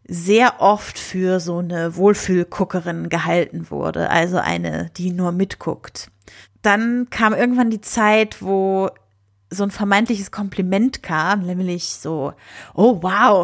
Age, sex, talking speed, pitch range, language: 30-49, female, 125 wpm, 175-220 Hz, German